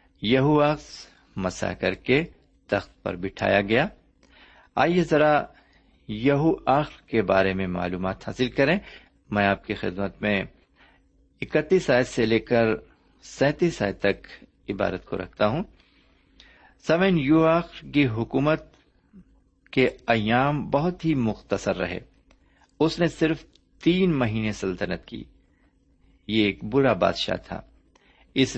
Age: 50-69